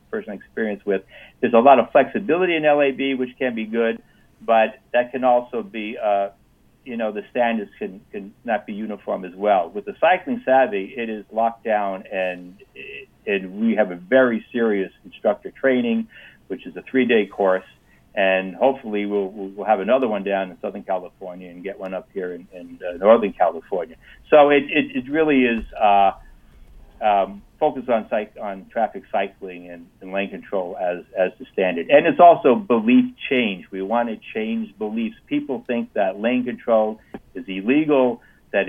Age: 60-79